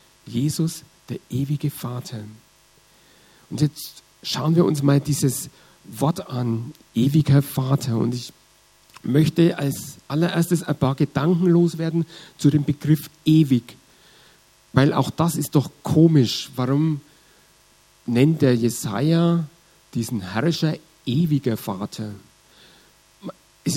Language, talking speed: German, 110 wpm